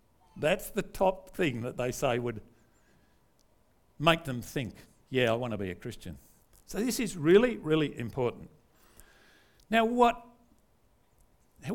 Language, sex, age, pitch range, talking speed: English, male, 50-69, 110-180 Hz, 135 wpm